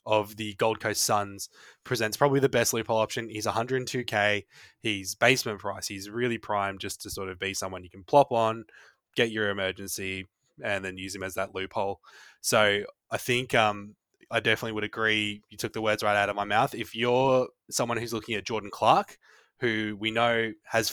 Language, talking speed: English, 195 wpm